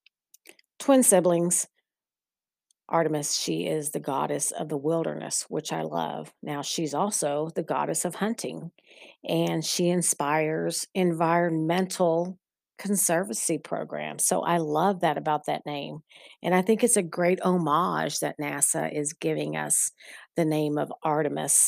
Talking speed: 135 wpm